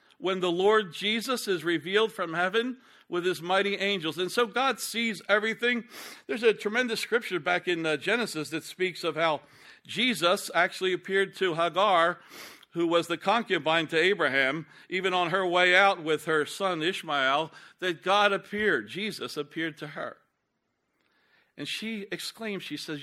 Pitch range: 165-220 Hz